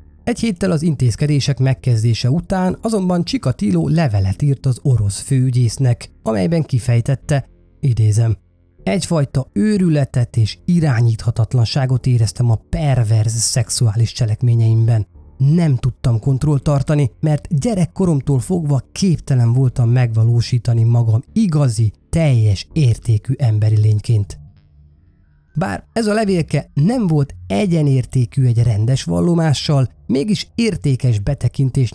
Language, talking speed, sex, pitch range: Hungarian, 100 wpm, male, 110-150 Hz